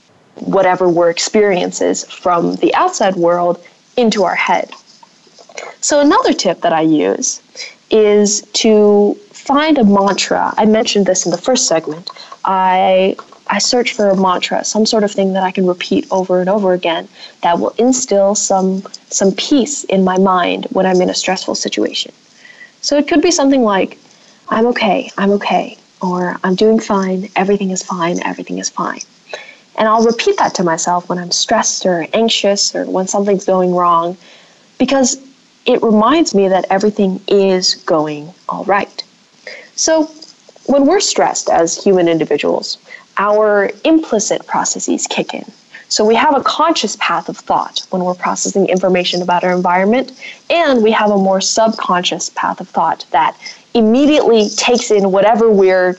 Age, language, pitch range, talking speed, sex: 20-39, English, 185-235 Hz, 160 wpm, female